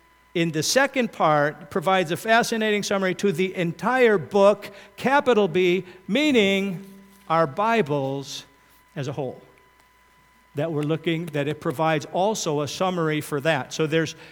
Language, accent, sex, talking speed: English, American, male, 140 wpm